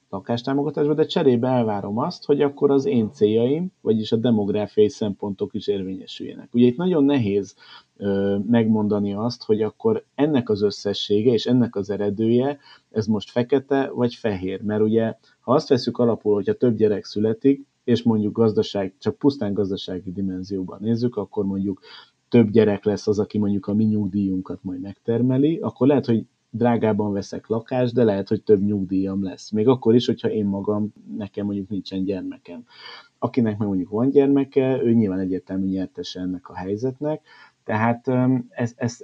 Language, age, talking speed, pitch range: Hungarian, 30-49, 160 wpm, 100-125 Hz